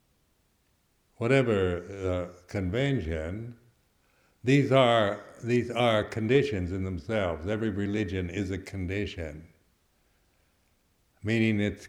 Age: 60-79